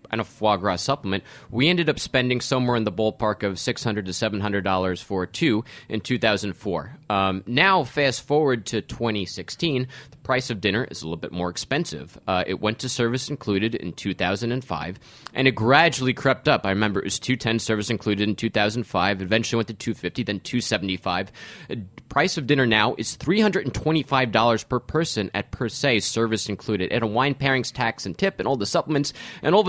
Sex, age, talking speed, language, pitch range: male, 30-49, 185 wpm, English, 105-145 Hz